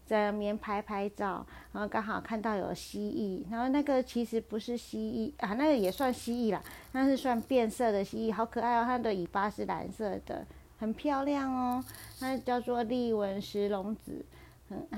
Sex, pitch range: female, 200-240 Hz